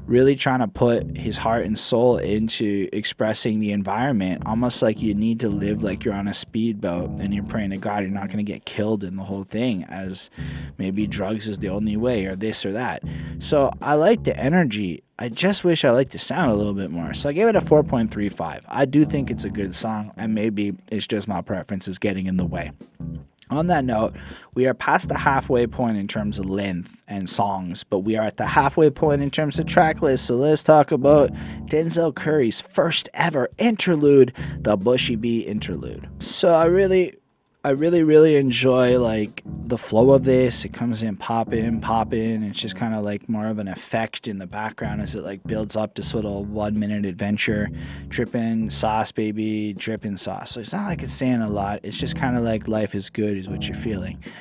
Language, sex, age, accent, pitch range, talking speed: English, male, 20-39, American, 100-125 Hz, 210 wpm